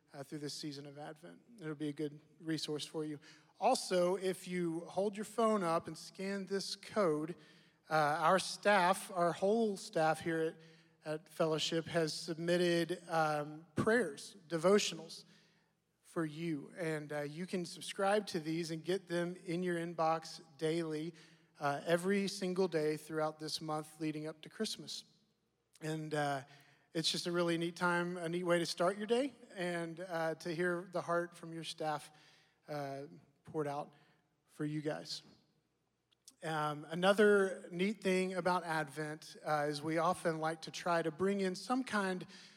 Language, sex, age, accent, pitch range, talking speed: English, male, 40-59, American, 155-180 Hz, 160 wpm